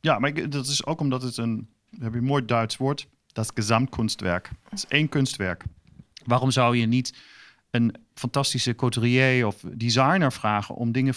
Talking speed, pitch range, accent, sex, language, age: 185 wpm, 110-130 Hz, Dutch, male, Dutch, 40-59